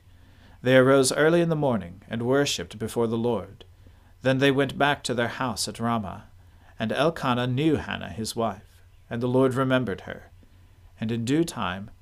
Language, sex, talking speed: English, male, 175 wpm